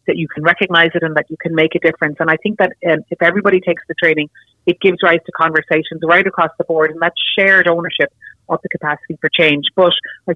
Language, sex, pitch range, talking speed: English, female, 160-190 Hz, 245 wpm